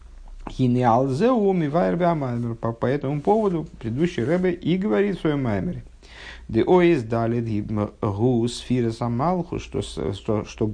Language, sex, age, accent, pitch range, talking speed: Russian, male, 50-69, native, 95-135 Hz, 80 wpm